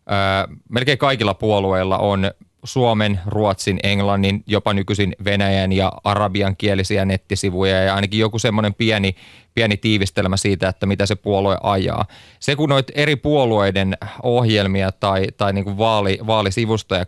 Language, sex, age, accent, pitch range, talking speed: Finnish, male, 30-49, native, 95-115 Hz, 125 wpm